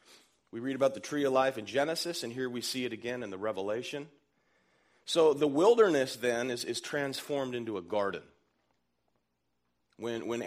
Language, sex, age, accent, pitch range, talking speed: English, male, 40-59, American, 105-145 Hz, 170 wpm